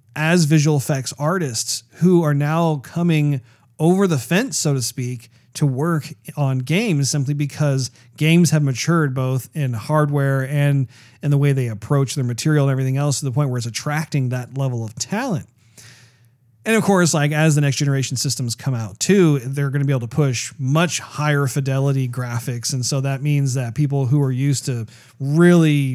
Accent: American